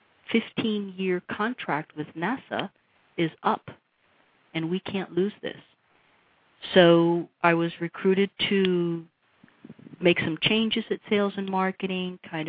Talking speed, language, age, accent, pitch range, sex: 120 wpm, English, 50-69, American, 145-170 Hz, female